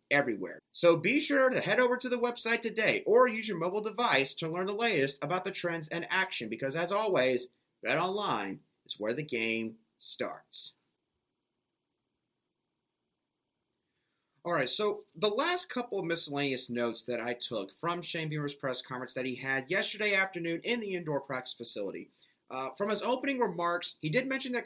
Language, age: English, 30-49